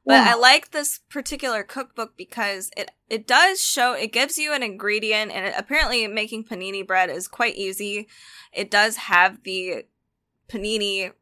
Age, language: 10-29, English